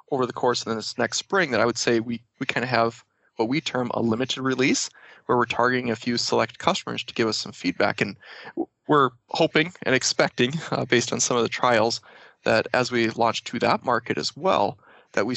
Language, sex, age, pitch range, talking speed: English, male, 20-39, 115-130 Hz, 220 wpm